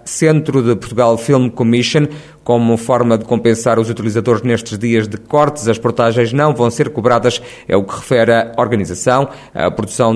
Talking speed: 170 wpm